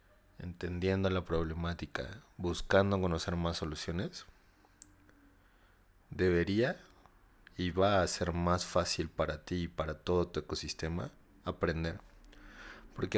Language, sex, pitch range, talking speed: Spanish, male, 85-95 Hz, 105 wpm